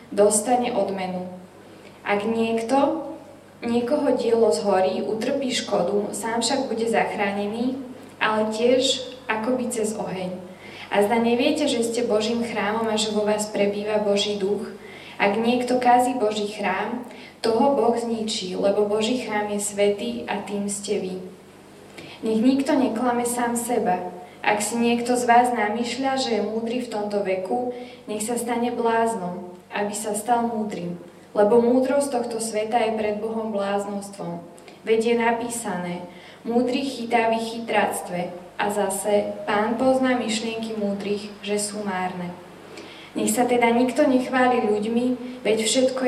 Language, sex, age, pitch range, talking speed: Slovak, female, 10-29, 205-240 Hz, 140 wpm